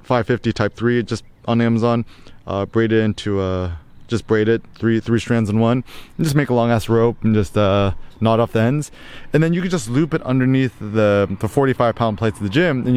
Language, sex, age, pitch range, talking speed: English, male, 20-39, 100-120 Hz, 225 wpm